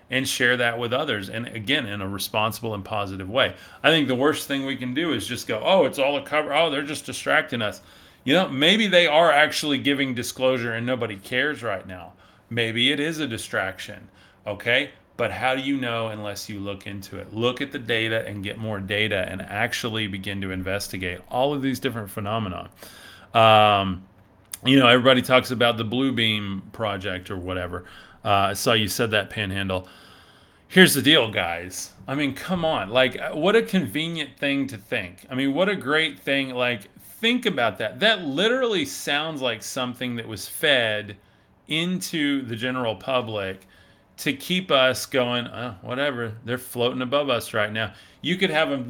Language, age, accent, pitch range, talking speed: English, 30-49, American, 100-140 Hz, 185 wpm